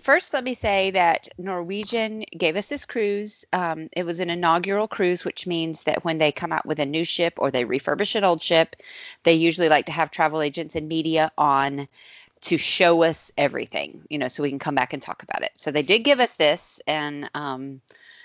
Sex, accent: female, American